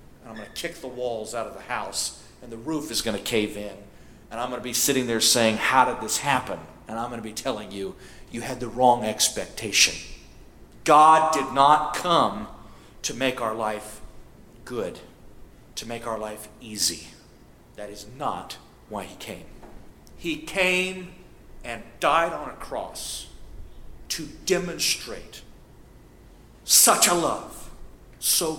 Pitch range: 105-150 Hz